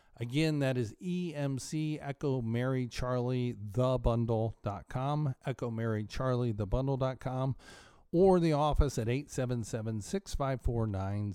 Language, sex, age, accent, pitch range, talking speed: English, male, 40-59, American, 115-145 Hz, 130 wpm